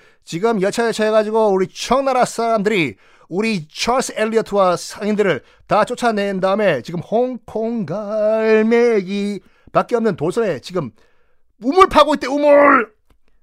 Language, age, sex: Korean, 40-59, male